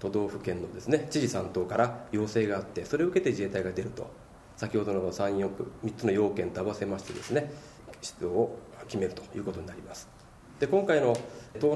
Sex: male